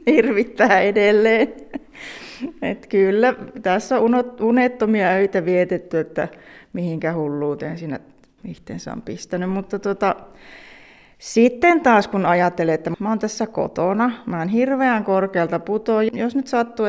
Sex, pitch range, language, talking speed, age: female, 170-225 Hz, Finnish, 120 wpm, 30-49